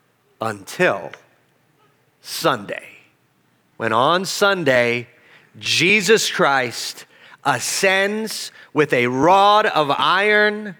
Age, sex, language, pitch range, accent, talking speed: 30-49, male, English, 145-190 Hz, American, 70 wpm